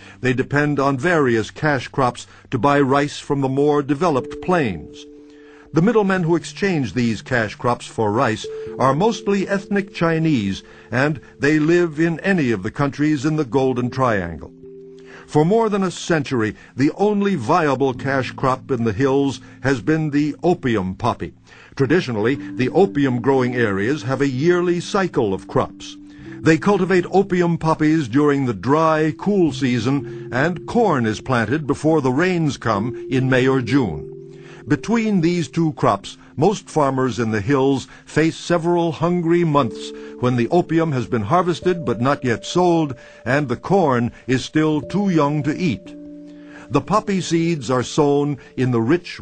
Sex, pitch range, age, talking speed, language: male, 125-165 Hz, 60-79, 155 wpm, English